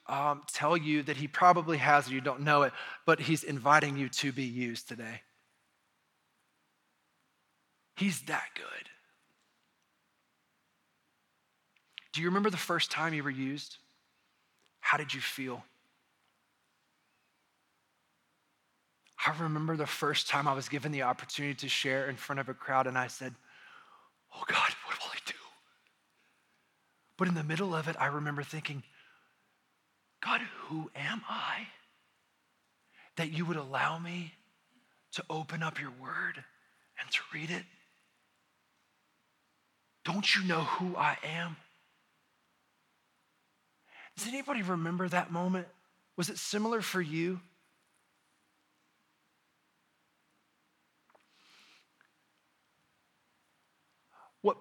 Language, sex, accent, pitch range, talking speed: English, male, American, 135-175 Hz, 115 wpm